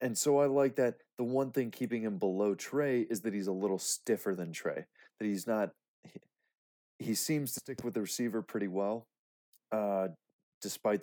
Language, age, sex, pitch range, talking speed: English, 30-49, male, 95-115 Hz, 190 wpm